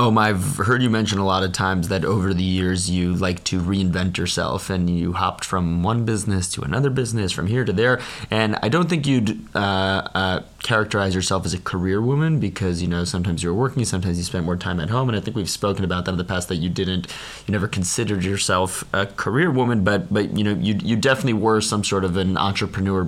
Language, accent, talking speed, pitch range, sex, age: English, American, 230 wpm, 90-105 Hz, male, 20-39